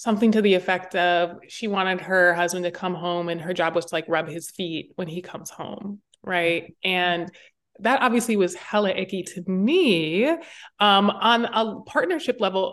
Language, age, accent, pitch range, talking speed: English, 20-39, American, 175-235 Hz, 185 wpm